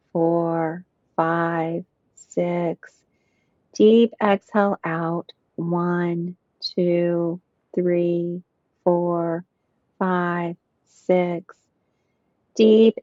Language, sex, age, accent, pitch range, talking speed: English, female, 40-59, American, 170-190 Hz, 60 wpm